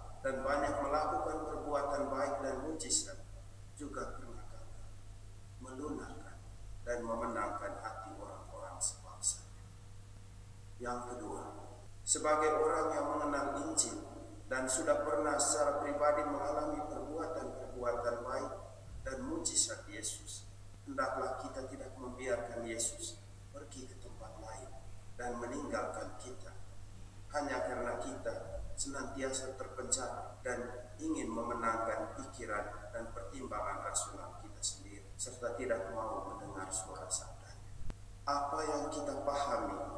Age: 40-59